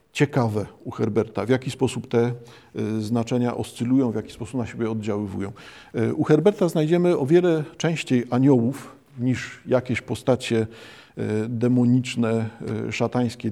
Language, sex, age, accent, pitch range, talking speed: Polish, male, 50-69, native, 115-130 Hz, 120 wpm